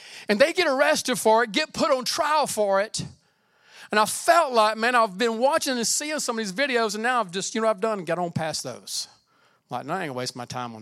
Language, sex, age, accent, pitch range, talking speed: English, male, 40-59, American, 205-285 Hz, 270 wpm